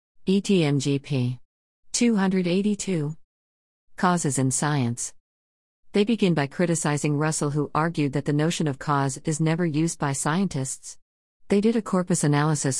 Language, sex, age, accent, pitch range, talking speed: English, female, 50-69, American, 130-155 Hz, 125 wpm